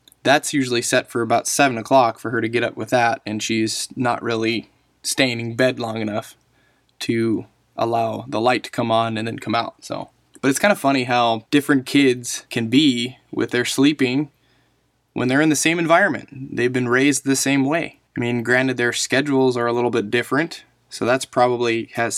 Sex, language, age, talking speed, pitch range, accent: male, English, 20-39, 200 wpm, 120-140 Hz, American